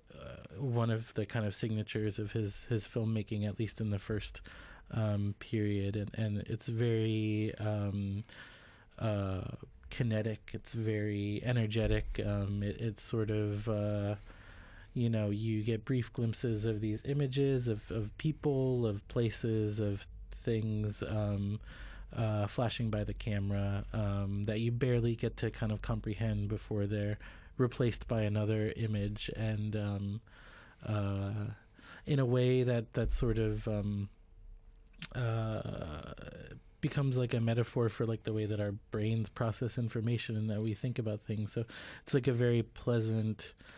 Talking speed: 145 wpm